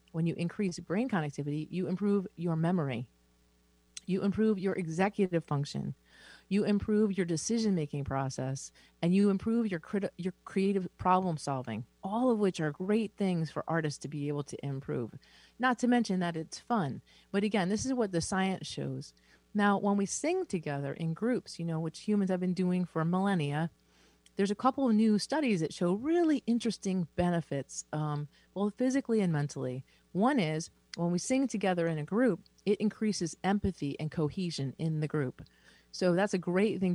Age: 30-49